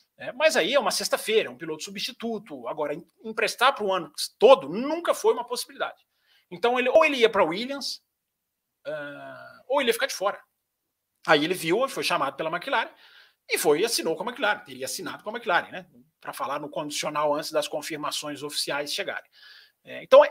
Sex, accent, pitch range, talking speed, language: male, Brazilian, 205-295 Hz, 185 wpm, Portuguese